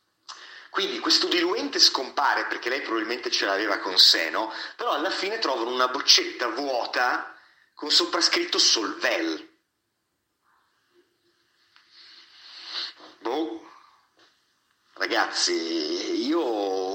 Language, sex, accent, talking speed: Italian, male, native, 90 wpm